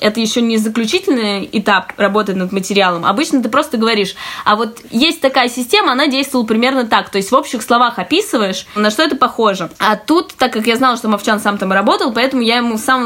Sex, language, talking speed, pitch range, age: female, Russian, 215 wpm, 210-260 Hz, 20-39